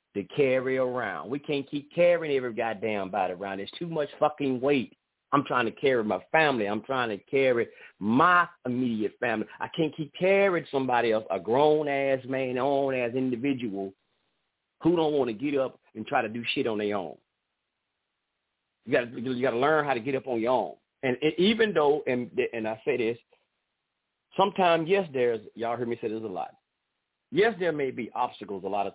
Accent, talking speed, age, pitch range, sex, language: American, 195 wpm, 40-59, 120-175 Hz, male, English